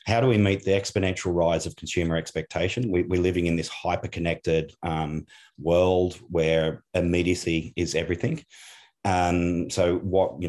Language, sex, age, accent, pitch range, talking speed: English, male, 30-49, Australian, 85-105 Hz, 150 wpm